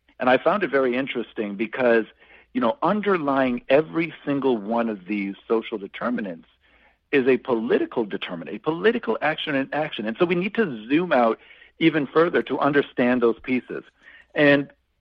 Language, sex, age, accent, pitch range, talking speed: English, male, 50-69, American, 115-150 Hz, 160 wpm